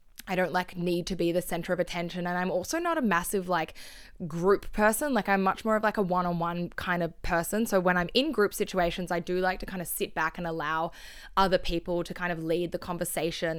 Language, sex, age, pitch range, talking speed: English, female, 20-39, 170-190 Hz, 245 wpm